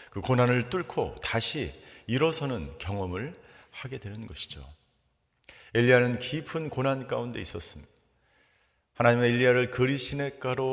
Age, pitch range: 40-59, 95-135 Hz